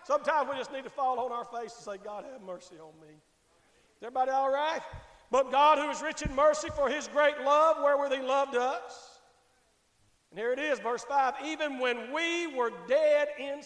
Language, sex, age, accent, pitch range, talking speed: English, male, 50-69, American, 260-330 Hz, 205 wpm